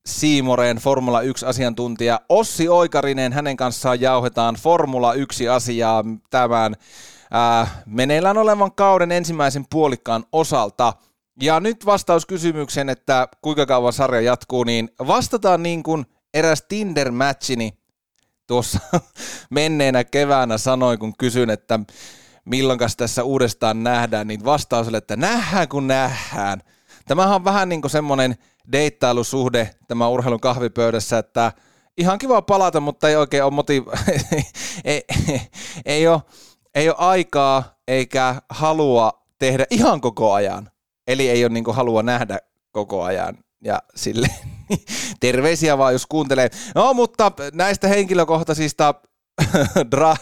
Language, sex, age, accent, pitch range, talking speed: Finnish, male, 30-49, native, 120-155 Hz, 120 wpm